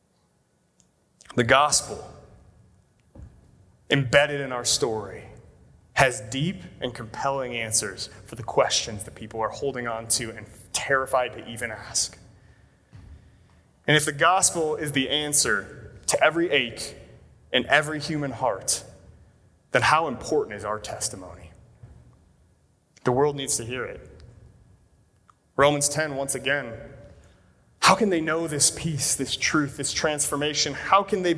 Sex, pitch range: male, 110-150 Hz